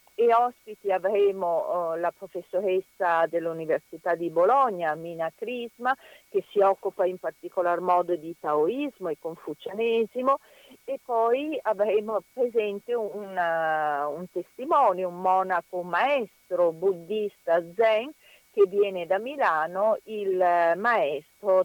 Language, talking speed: Italian, 115 wpm